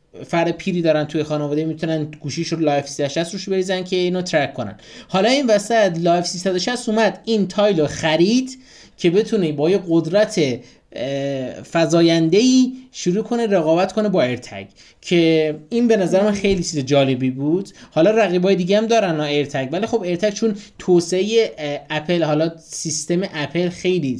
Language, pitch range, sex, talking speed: Persian, 150-205 Hz, male, 165 wpm